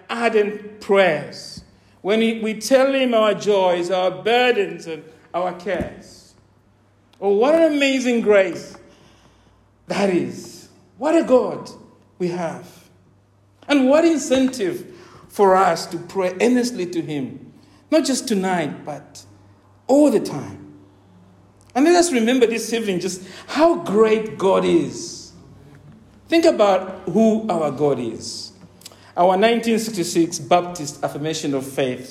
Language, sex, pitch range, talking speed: English, male, 145-235 Hz, 120 wpm